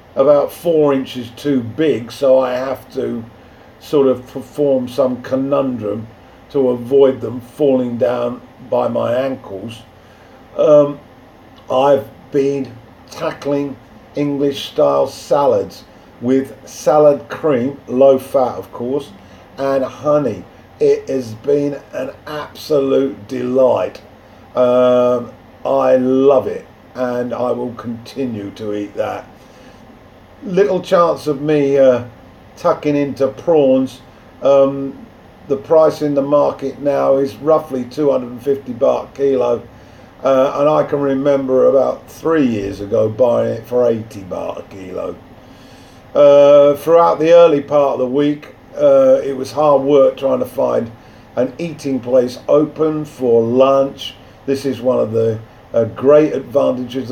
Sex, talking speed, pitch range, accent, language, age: male, 130 wpm, 120-140 Hz, British, English, 50-69